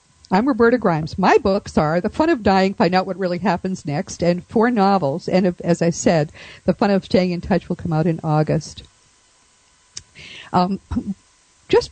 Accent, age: American, 50-69